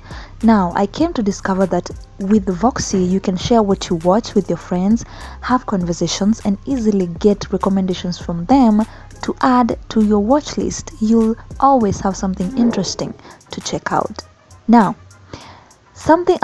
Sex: female